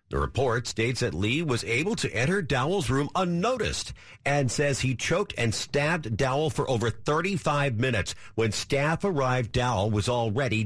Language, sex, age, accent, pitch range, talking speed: English, male, 50-69, American, 105-145 Hz, 165 wpm